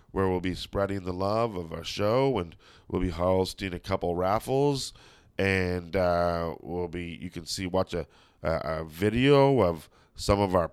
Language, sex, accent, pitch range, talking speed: English, male, American, 85-100 Hz, 175 wpm